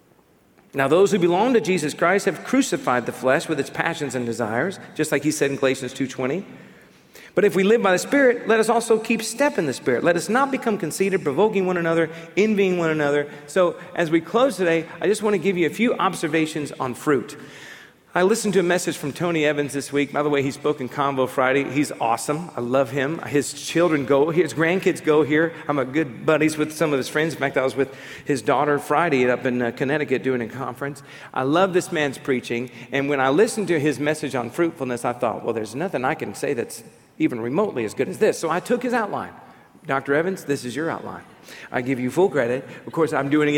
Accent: American